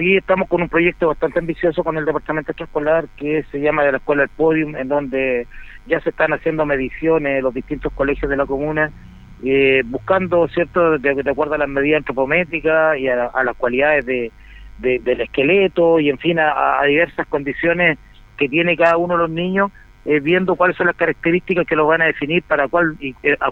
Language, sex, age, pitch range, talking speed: Spanish, male, 40-59, 140-175 Hz, 205 wpm